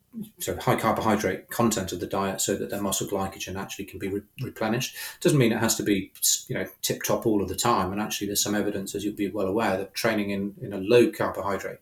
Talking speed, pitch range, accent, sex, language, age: 250 wpm, 100-115 Hz, British, male, English, 30-49